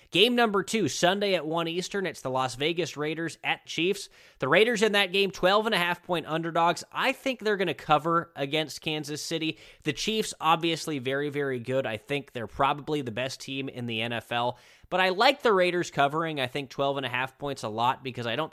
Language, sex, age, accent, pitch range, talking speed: English, male, 20-39, American, 135-175 Hz, 200 wpm